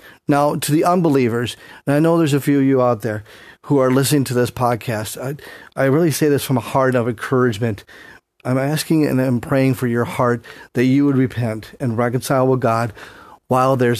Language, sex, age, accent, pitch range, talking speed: English, male, 40-59, American, 120-140 Hz, 205 wpm